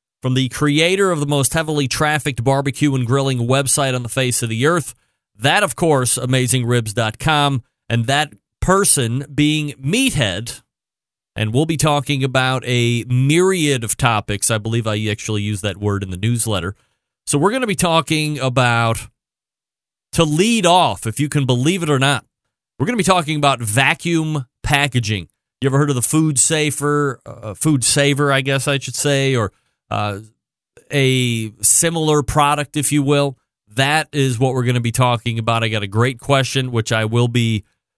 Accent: American